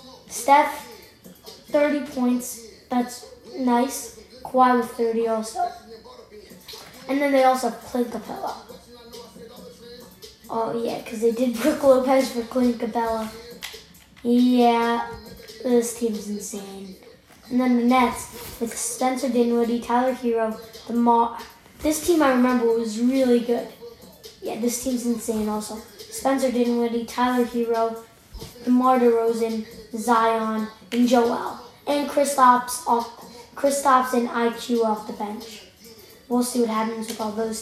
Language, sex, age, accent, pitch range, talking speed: English, female, 10-29, American, 230-255 Hz, 120 wpm